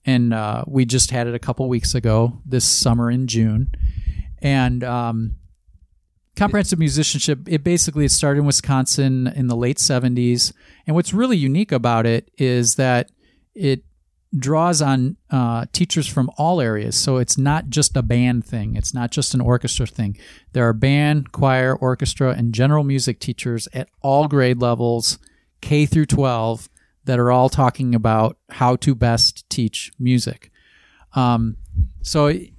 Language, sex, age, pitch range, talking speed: English, male, 40-59, 115-145 Hz, 155 wpm